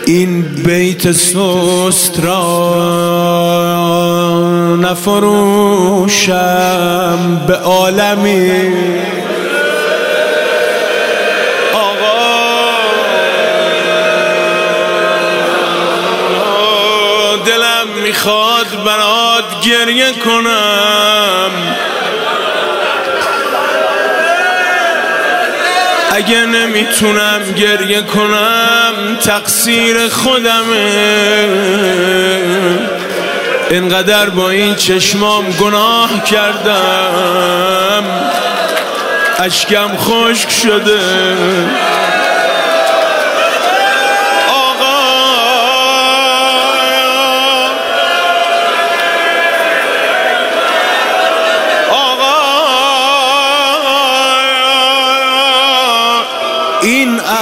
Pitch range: 185-235 Hz